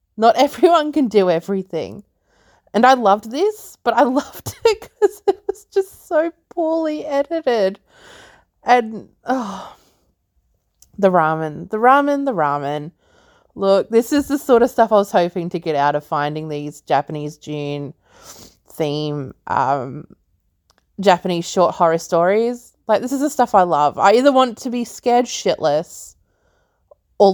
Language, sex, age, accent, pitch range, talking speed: English, female, 20-39, Australian, 160-265 Hz, 145 wpm